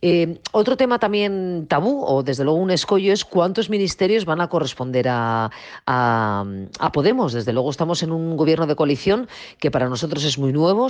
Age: 40-59